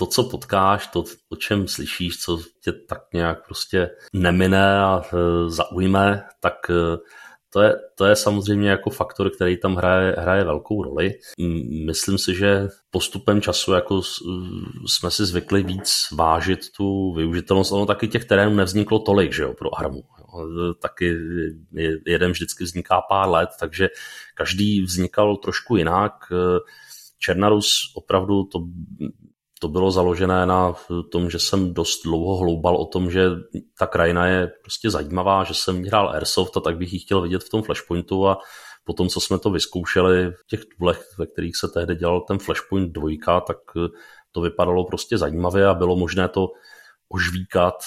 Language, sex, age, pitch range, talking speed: Czech, male, 40-59, 85-100 Hz, 155 wpm